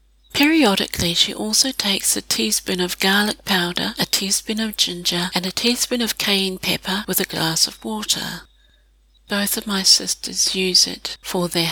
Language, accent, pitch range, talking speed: English, British, 180-210 Hz, 165 wpm